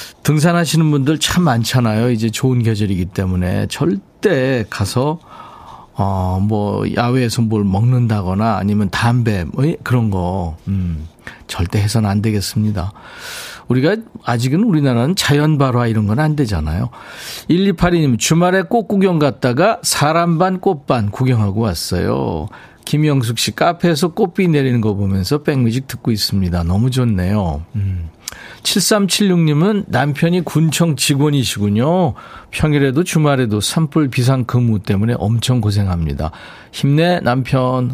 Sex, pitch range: male, 105-155 Hz